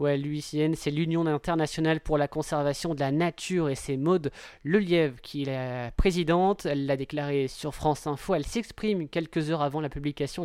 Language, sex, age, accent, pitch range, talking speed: French, male, 20-39, French, 140-165 Hz, 185 wpm